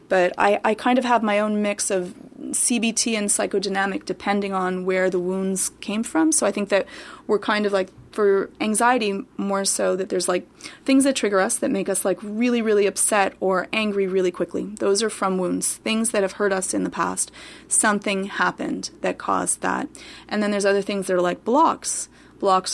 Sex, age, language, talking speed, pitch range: female, 30-49, English, 205 wpm, 190-230 Hz